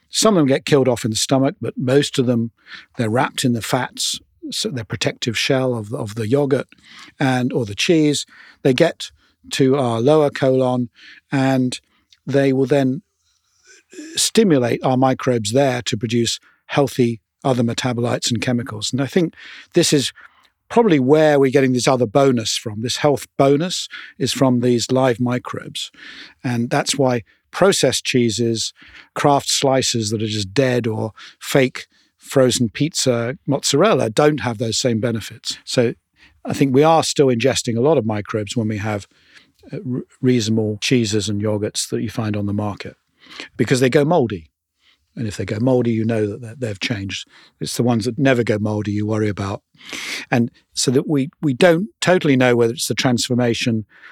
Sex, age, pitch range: male, 50-69, 115-140 Hz